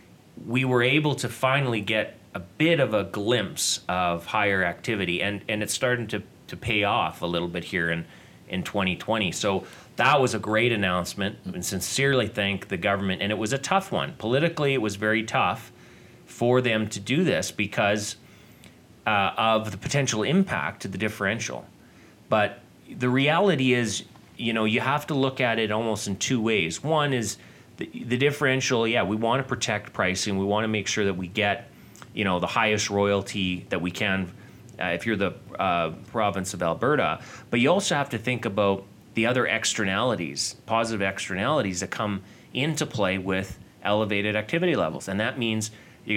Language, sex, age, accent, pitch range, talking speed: English, male, 30-49, American, 100-125 Hz, 180 wpm